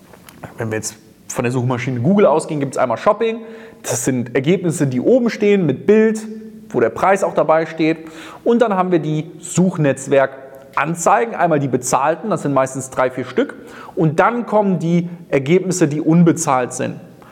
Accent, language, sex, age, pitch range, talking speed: German, German, male, 30-49, 155-230 Hz, 170 wpm